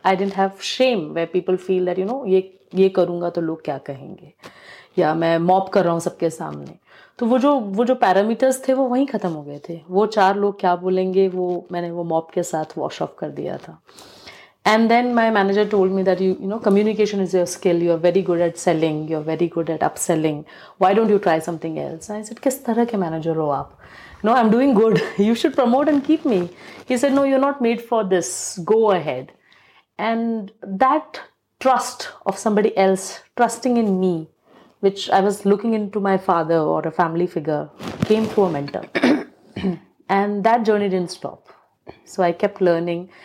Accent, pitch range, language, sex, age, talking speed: native, 175-215 Hz, Hindi, female, 30-49, 205 wpm